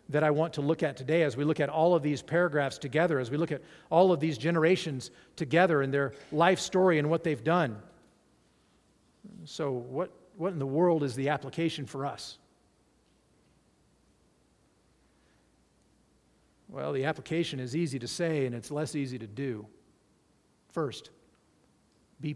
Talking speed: 160 wpm